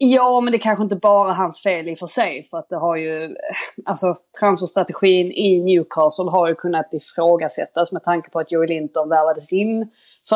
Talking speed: 190 wpm